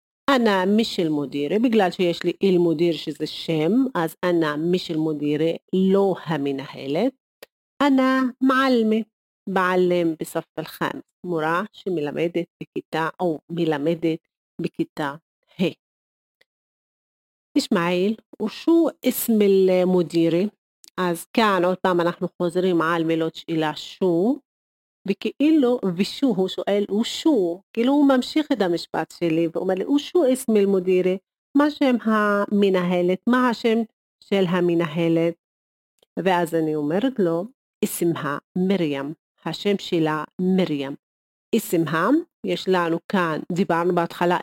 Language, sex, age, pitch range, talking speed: Hebrew, female, 40-59, 165-210 Hz, 110 wpm